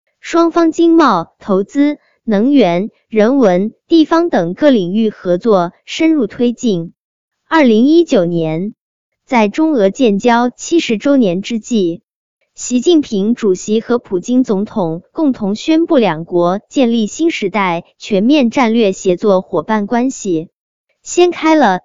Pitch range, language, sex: 195-280 Hz, Chinese, male